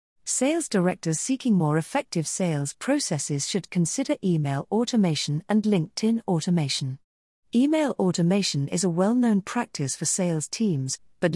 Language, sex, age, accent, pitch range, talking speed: English, female, 40-59, British, 155-215 Hz, 125 wpm